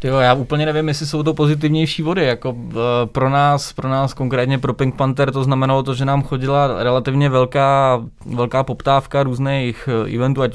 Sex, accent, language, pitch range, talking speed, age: male, native, Czech, 110-130 Hz, 190 wpm, 20-39